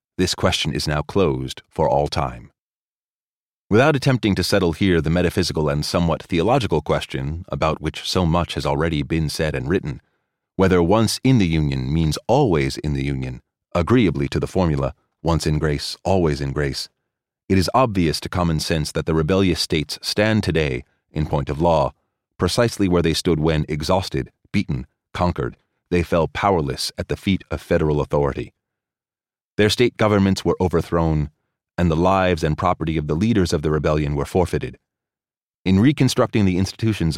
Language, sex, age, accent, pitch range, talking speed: English, male, 30-49, American, 75-95 Hz, 170 wpm